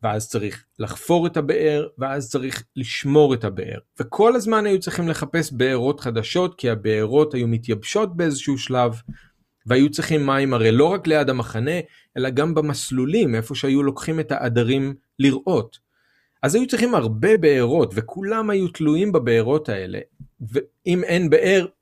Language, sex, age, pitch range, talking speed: Hebrew, male, 40-59, 120-155 Hz, 145 wpm